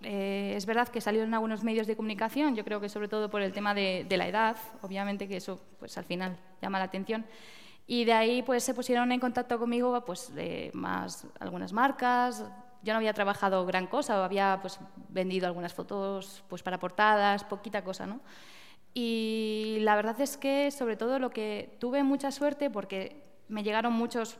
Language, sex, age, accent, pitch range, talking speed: Spanish, female, 20-39, Spanish, 200-240 Hz, 190 wpm